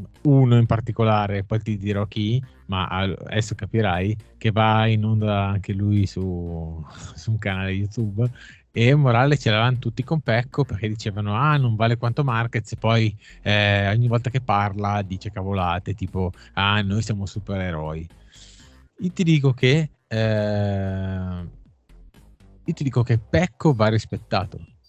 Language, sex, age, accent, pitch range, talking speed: Italian, male, 20-39, native, 100-120 Hz, 145 wpm